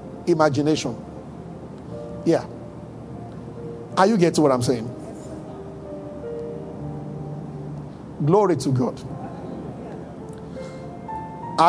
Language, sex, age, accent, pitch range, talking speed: English, male, 50-69, Nigerian, 145-180 Hz, 60 wpm